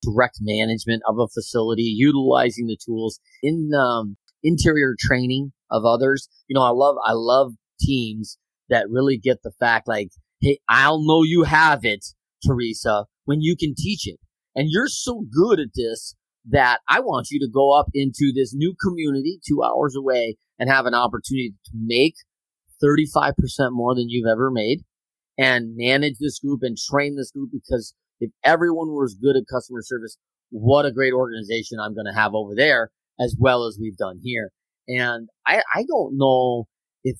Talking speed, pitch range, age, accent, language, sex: 175 wpm, 115-140 Hz, 30-49, American, English, male